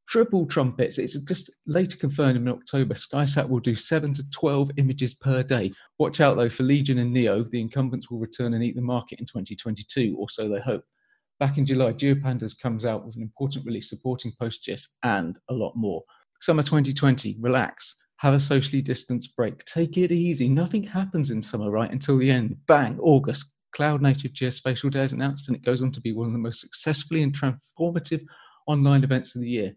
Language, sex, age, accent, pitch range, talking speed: English, male, 40-59, British, 120-145 Hz, 200 wpm